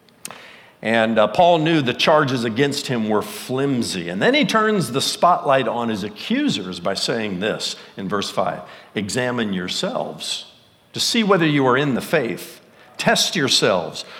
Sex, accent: male, American